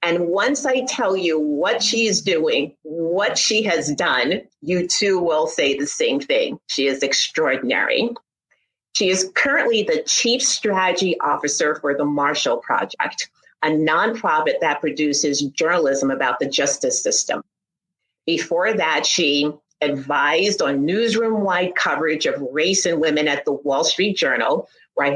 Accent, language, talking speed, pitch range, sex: American, English, 145 wpm, 155-245 Hz, female